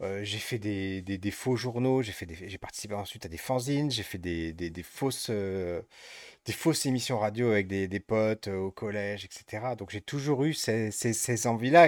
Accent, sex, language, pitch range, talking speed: French, male, French, 100-130 Hz, 215 wpm